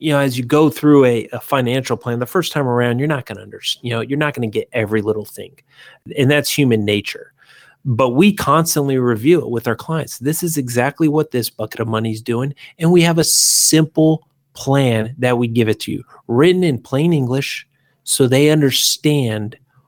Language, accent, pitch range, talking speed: English, American, 120-155 Hz, 205 wpm